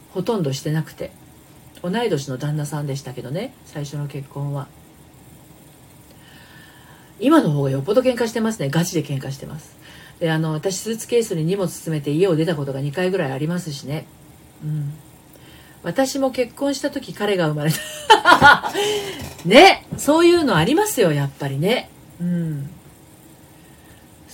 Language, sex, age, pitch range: Japanese, female, 40-59, 150-230 Hz